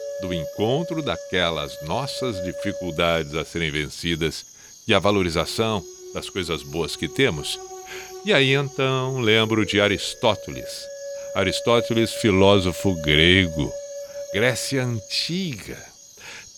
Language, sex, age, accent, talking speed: Portuguese, male, 60-79, Brazilian, 100 wpm